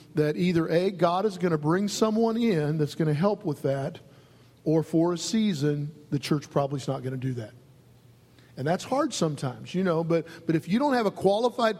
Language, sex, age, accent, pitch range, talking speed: English, male, 50-69, American, 140-170 Hz, 215 wpm